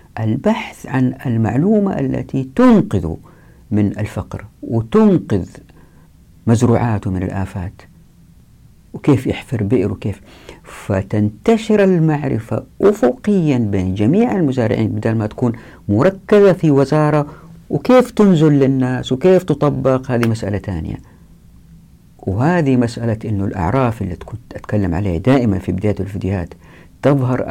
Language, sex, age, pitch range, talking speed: Arabic, female, 50-69, 100-130 Hz, 105 wpm